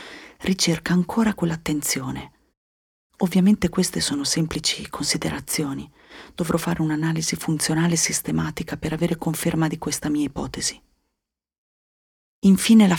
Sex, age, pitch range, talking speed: female, 40-59, 150-185 Hz, 105 wpm